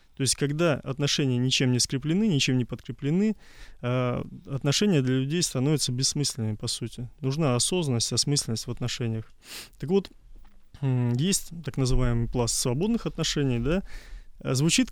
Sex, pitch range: male, 125-150 Hz